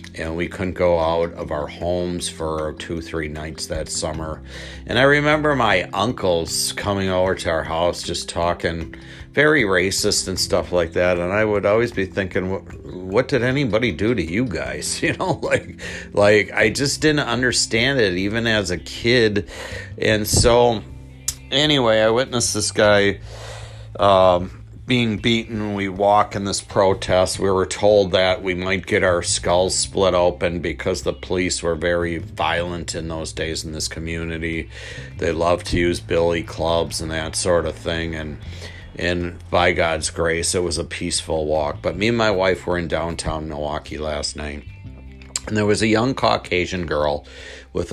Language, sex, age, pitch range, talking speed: English, male, 50-69, 80-105 Hz, 175 wpm